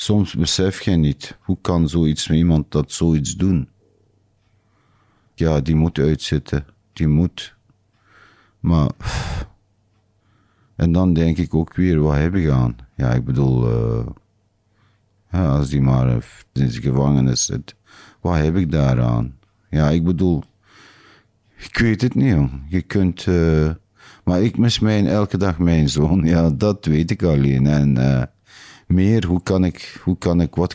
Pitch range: 80-105 Hz